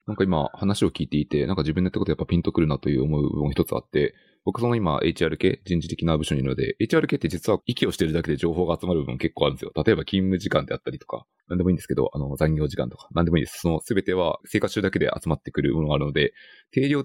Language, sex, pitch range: Japanese, male, 75-100 Hz